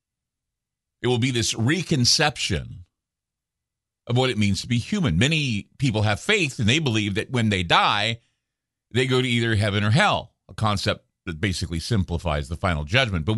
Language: English